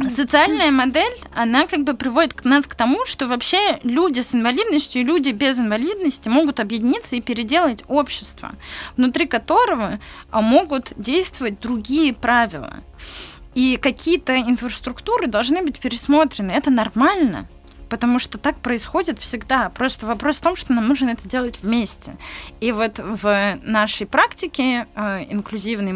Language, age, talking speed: Russian, 20-39, 140 wpm